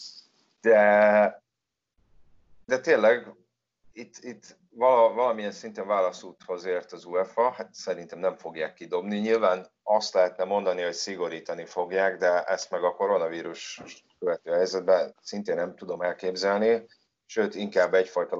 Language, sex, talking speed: Hungarian, male, 120 wpm